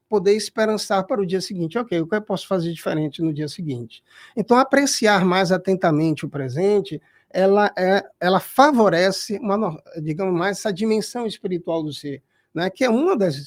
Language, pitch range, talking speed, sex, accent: Portuguese, 155-205 Hz, 175 wpm, male, Brazilian